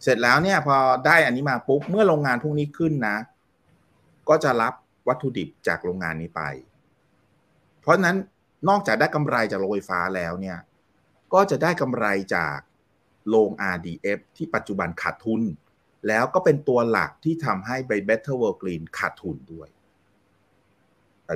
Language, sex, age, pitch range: Thai, male, 30-49, 95-135 Hz